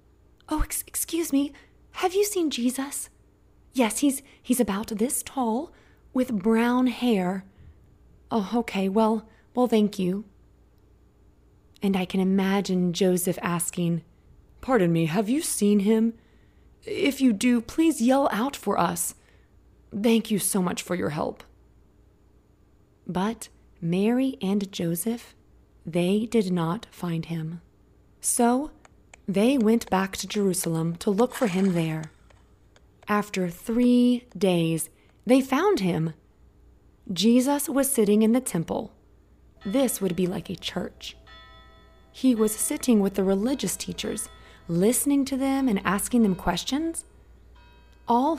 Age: 30-49